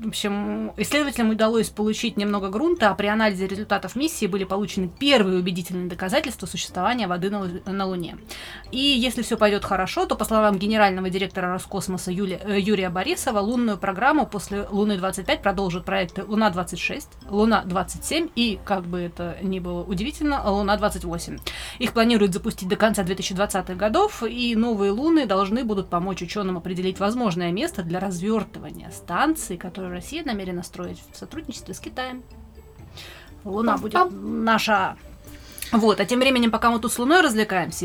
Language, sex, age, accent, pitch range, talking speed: Russian, female, 20-39, native, 190-230 Hz, 145 wpm